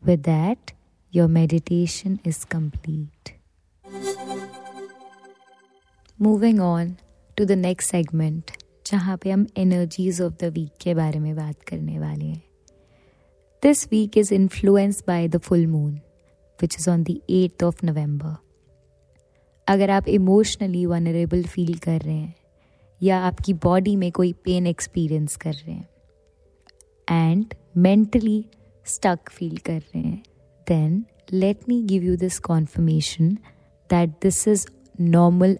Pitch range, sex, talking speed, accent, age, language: 150-190 Hz, female, 130 wpm, native, 20-39, Hindi